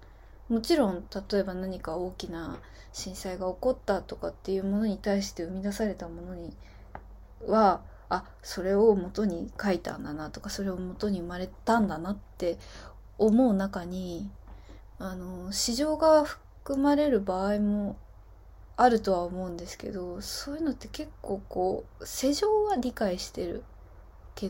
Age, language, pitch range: 20-39, Japanese, 165-235 Hz